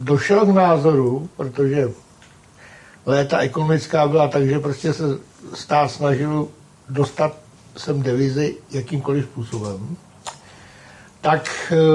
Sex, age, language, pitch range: male, 60-79, Czech, 130-165 Hz